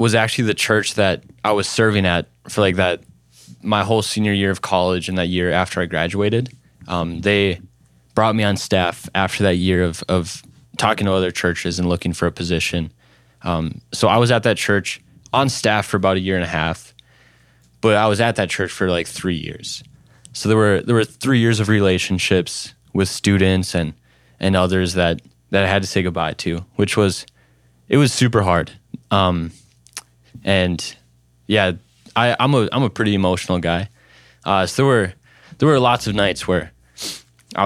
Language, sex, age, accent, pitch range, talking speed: English, male, 20-39, American, 85-110 Hz, 190 wpm